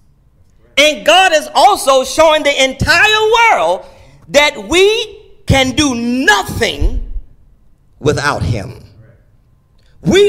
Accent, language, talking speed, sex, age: American, English, 95 wpm, male, 40-59